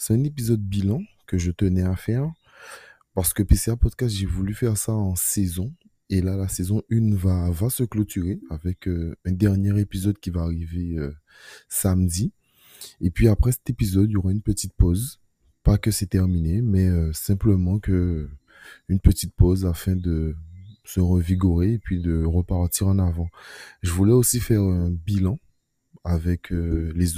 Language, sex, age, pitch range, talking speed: French, male, 20-39, 85-100 Hz, 175 wpm